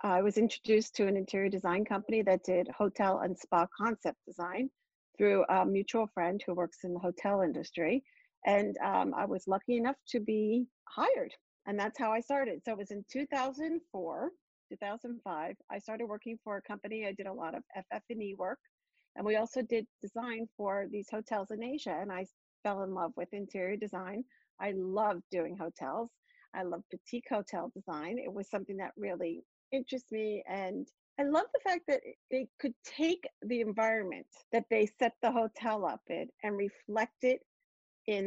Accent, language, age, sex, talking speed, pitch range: American, English, 50-69, female, 180 wpm, 195-250 Hz